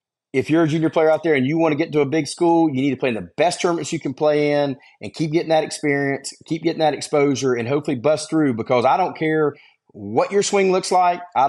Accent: American